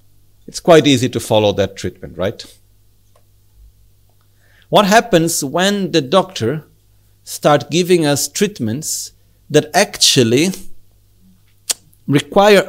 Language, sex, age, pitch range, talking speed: Italian, male, 50-69, 100-155 Hz, 95 wpm